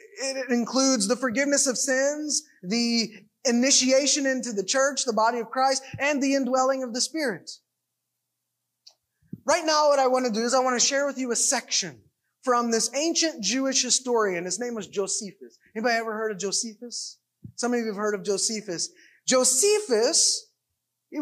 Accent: American